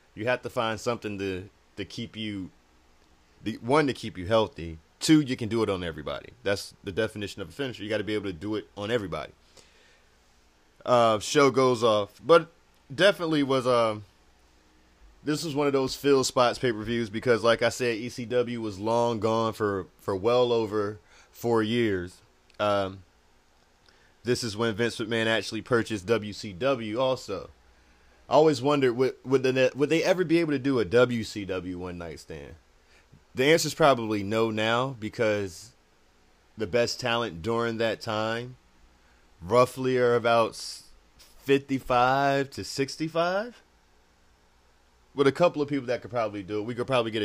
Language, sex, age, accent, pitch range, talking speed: English, male, 30-49, American, 85-125 Hz, 160 wpm